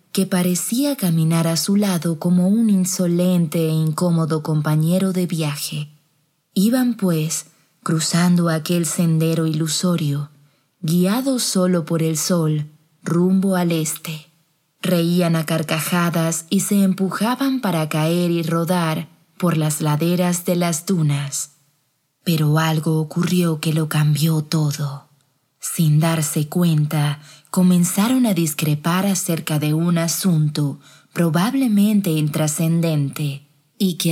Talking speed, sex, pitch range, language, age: 115 wpm, female, 155-180 Hz, Spanish, 20-39